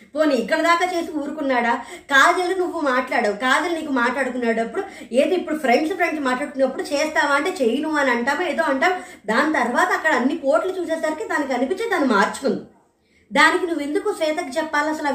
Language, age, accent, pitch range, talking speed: Telugu, 20-39, native, 260-335 Hz, 150 wpm